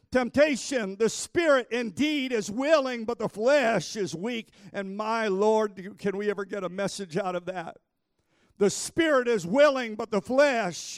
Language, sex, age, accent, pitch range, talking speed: English, male, 50-69, American, 215-265 Hz, 165 wpm